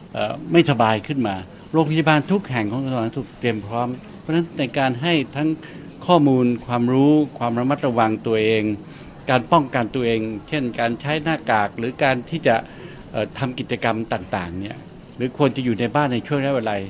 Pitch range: 115-150 Hz